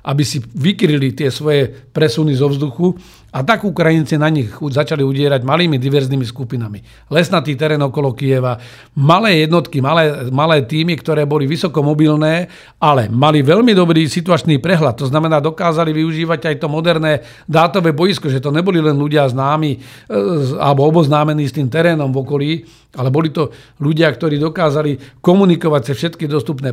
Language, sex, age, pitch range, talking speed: Slovak, male, 50-69, 140-175 Hz, 155 wpm